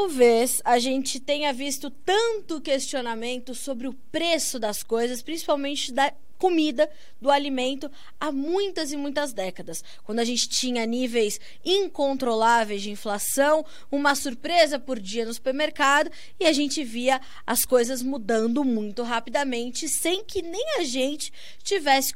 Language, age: Portuguese, 20-39